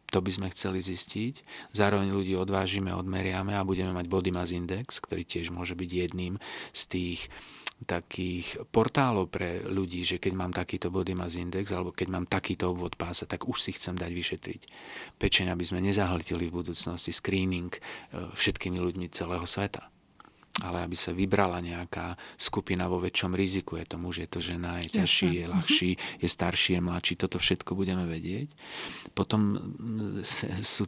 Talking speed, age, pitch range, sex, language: 165 wpm, 40-59, 90-100 Hz, male, Slovak